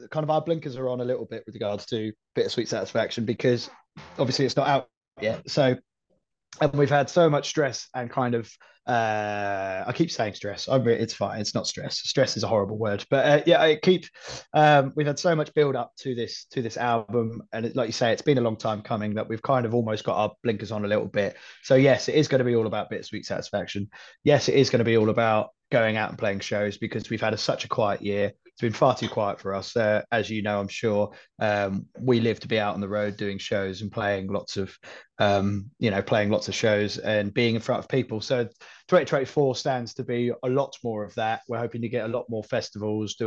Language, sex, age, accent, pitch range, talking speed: English, male, 20-39, British, 105-135 Hz, 245 wpm